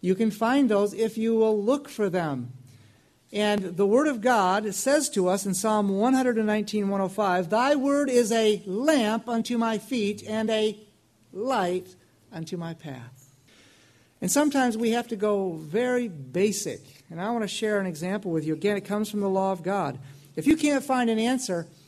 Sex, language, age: male, English, 60-79